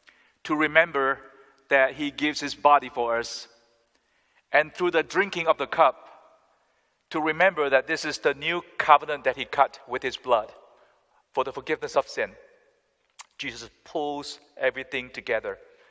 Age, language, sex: 50-69, English, male